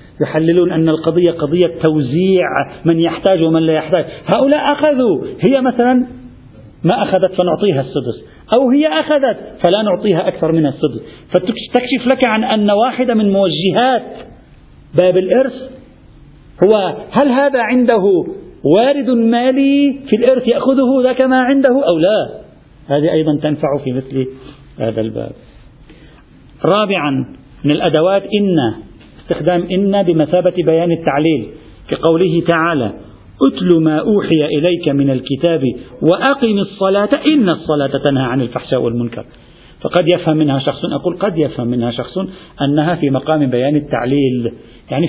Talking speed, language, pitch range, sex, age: 130 wpm, Arabic, 140-205 Hz, male, 50-69